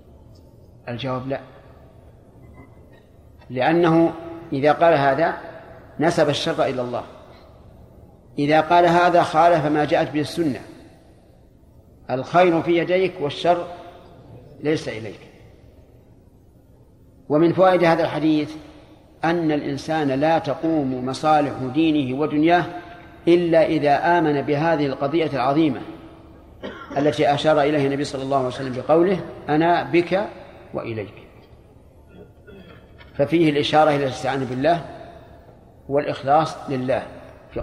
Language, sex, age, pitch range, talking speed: Arabic, male, 50-69, 135-165 Hz, 95 wpm